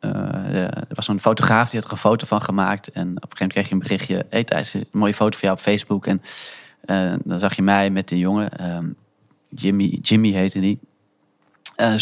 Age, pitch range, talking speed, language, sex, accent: 20-39, 95-110 Hz, 235 wpm, Dutch, male, Dutch